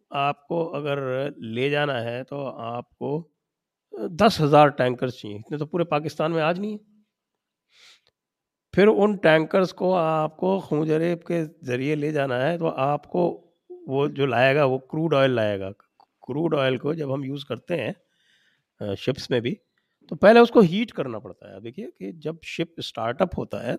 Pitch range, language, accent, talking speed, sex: 140-200 Hz, English, Indian, 155 wpm, male